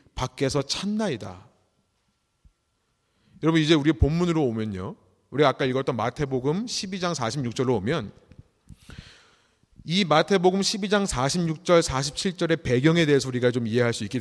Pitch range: 130-190 Hz